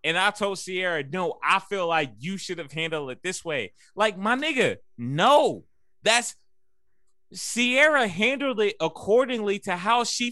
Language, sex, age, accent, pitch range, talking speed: English, male, 20-39, American, 160-235 Hz, 155 wpm